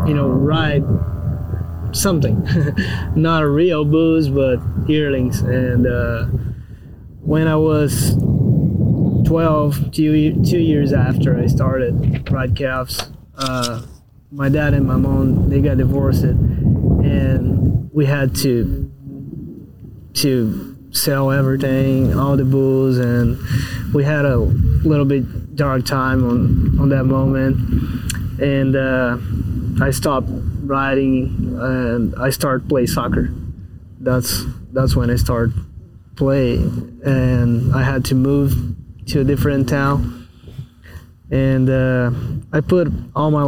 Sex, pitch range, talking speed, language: male, 115-140 Hz, 120 wpm, English